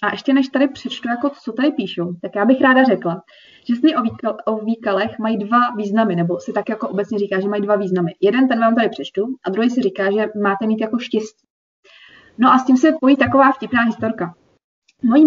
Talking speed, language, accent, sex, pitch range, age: 220 wpm, Czech, native, female, 200-255 Hz, 20-39